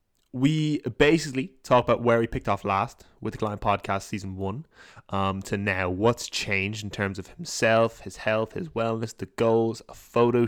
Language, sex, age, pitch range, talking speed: English, male, 10-29, 105-130 Hz, 185 wpm